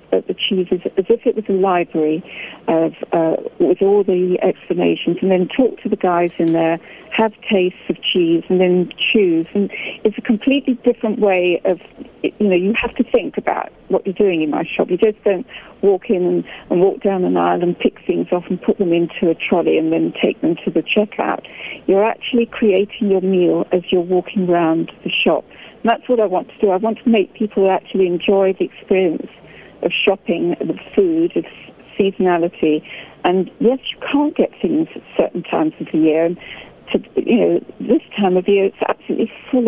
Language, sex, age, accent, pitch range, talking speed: English, female, 50-69, British, 180-215 Hz, 205 wpm